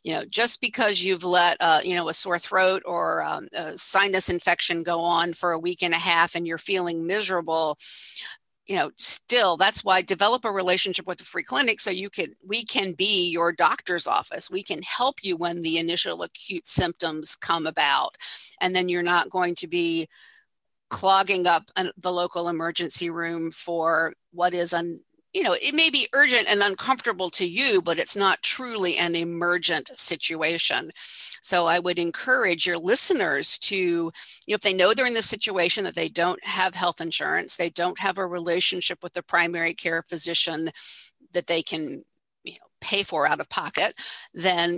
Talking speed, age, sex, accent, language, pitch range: 185 wpm, 50-69, female, American, English, 170-195 Hz